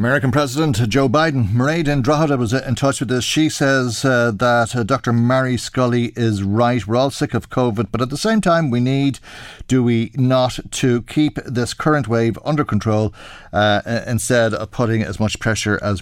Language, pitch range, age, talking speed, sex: English, 105-125 Hz, 40-59, 190 wpm, male